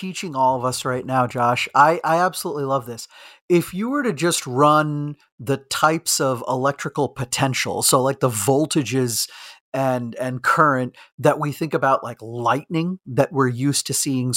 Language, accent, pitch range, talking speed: English, American, 130-160 Hz, 170 wpm